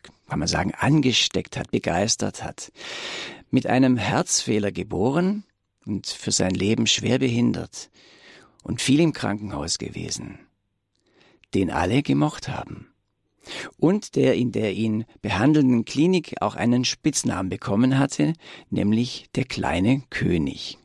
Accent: German